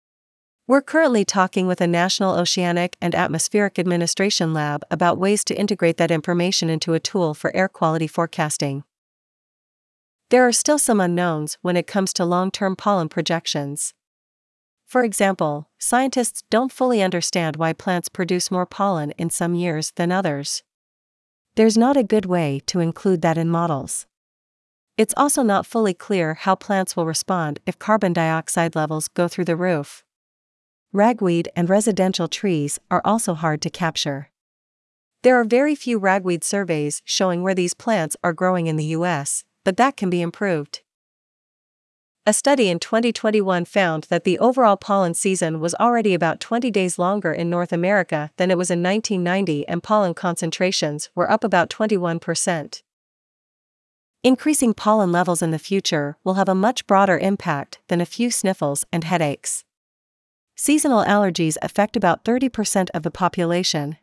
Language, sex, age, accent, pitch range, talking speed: English, female, 40-59, American, 165-205 Hz, 155 wpm